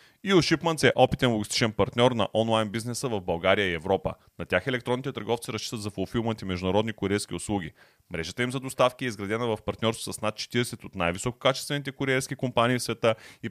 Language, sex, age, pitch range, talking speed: Bulgarian, male, 30-49, 100-130 Hz, 180 wpm